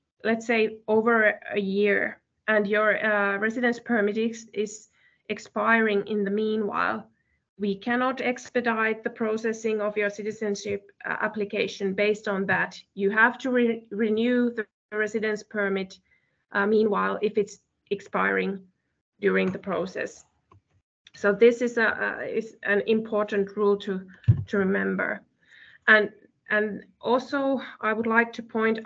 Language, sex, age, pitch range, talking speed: Finnish, female, 20-39, 205-230 Hz, 130 wpm